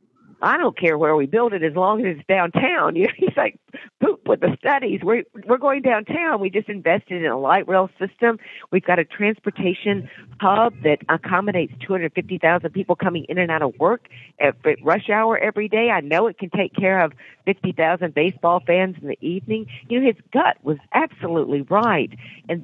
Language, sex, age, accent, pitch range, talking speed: English, female, 50-69, American, 155-200 Hz, 190 wpm